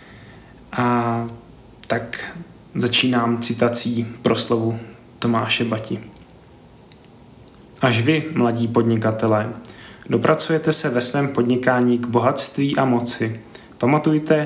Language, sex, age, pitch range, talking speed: Czech, male, 20-39, 115-130 Hz, 85 wpm